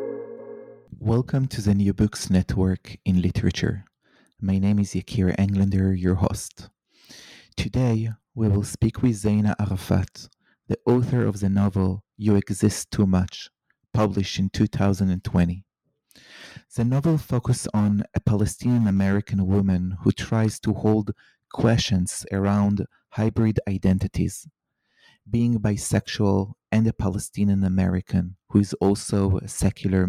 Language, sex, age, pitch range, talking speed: English, male, 30-49, 95-110 Hz, 120 wpm